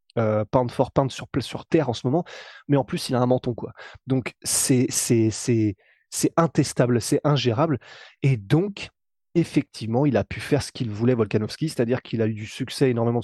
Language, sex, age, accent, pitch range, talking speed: French, male, 20-39, French, 120-150 Hz, 200 wpm